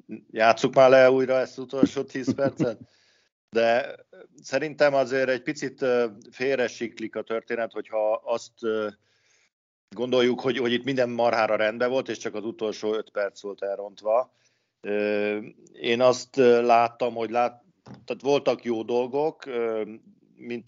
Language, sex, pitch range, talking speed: Hungarian, male, 110-125 Hz, 130 wpm